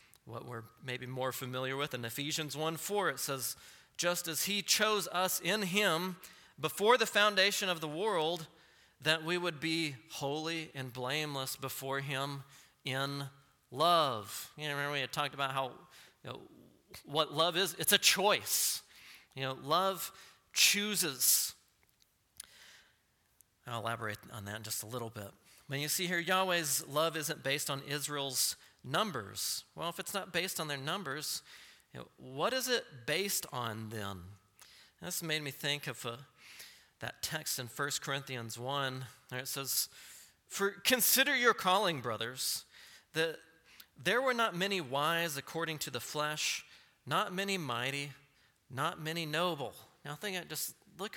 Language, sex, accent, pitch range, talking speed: English, male, American, 130-175 Hz, 155 wpm